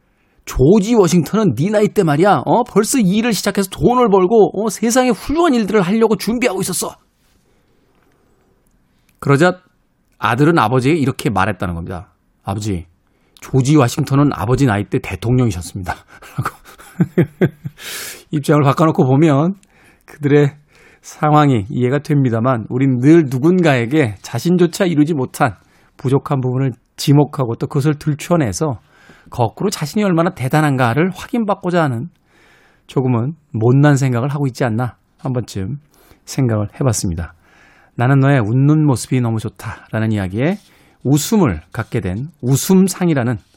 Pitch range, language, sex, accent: 120-175 Hz, Korean, male, native